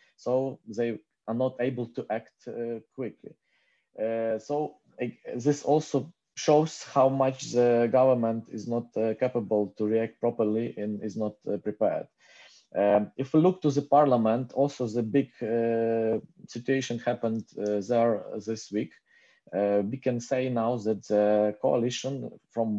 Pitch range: 110-125 Hz